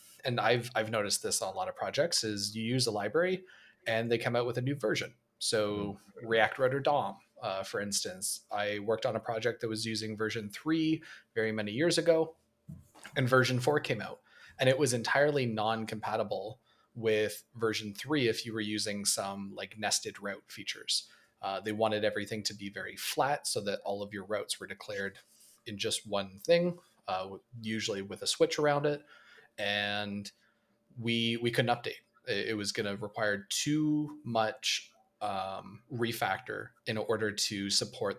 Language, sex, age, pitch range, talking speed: English, male, 30-49, 105-135 Hz, 175 wpm